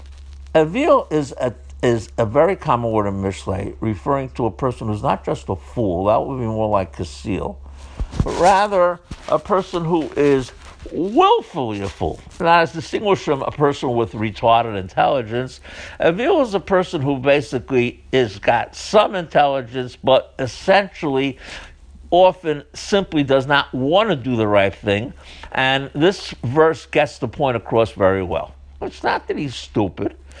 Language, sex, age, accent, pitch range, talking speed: English, male, 60-79, American, 100-150 Hz, 155 wpm